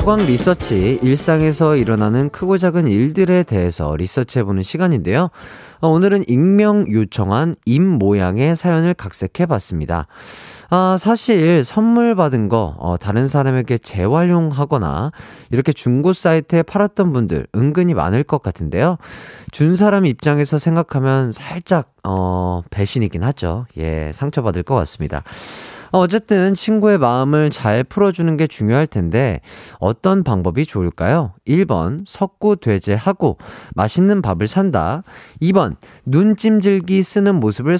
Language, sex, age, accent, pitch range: Korean, male, 30-49, native, 115-185 Hz